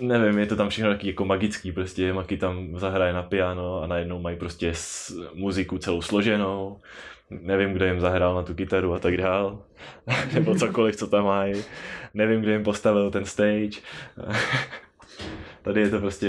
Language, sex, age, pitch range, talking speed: Czech, male, 20-39, 90-105 Hz, 175 wpm